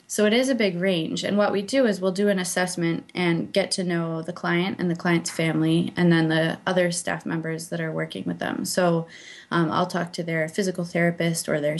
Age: 20-39